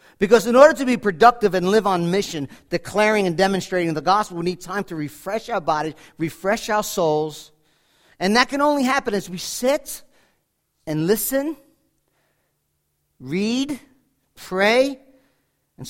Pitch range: 160-240 Hz